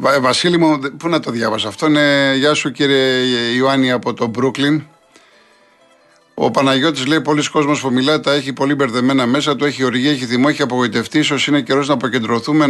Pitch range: 125-150 Hz